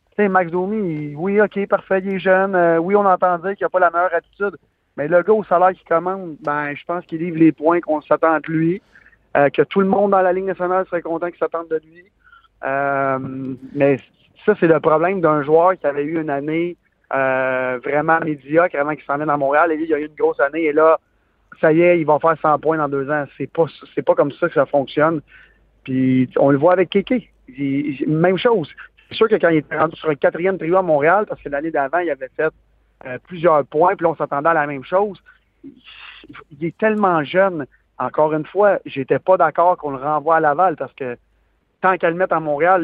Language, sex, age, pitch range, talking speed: French, male, 30-49, 150-185 Hz, 235 wpm